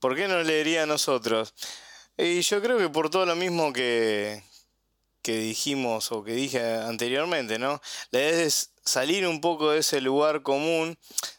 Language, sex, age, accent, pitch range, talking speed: Spanish, male, 20-39, Argentinian, 125-160 Hz, 170 wpm